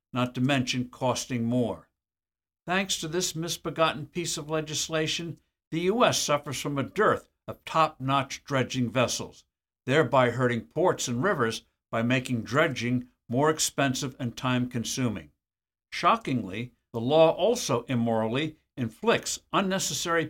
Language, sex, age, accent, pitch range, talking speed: English, male, 60-79, American, 120-160 Hz, 120 wpm